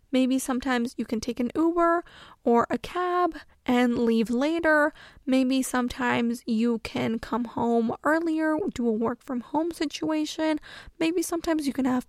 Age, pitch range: 10-29, 245-300 Hz